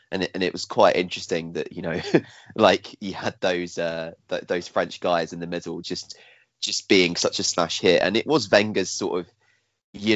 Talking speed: 215 wpm